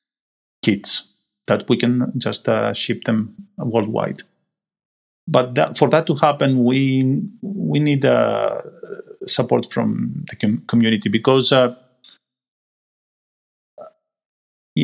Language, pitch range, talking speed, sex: English, 120-150 Hz, 105 wpm, male